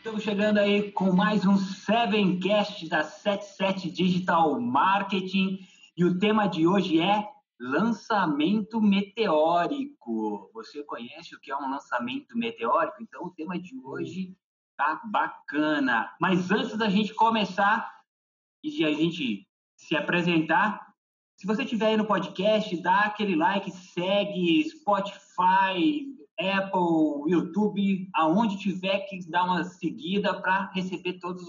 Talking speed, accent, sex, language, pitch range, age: 130 wpm, Brazilian, male, Portuguese, 165-220 Hz, 20-39